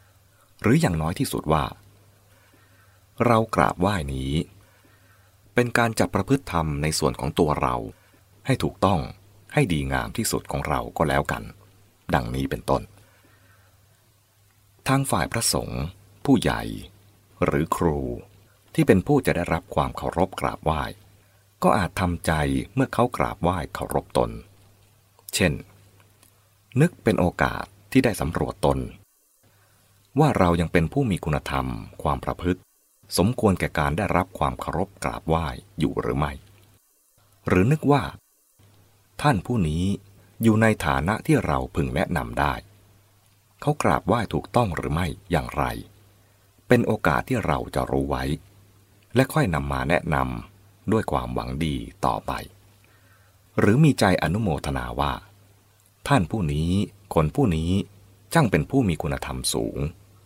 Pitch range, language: 85-105 Hz, English